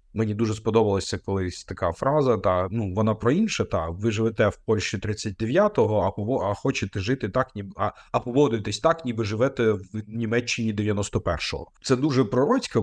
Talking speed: 170 wpm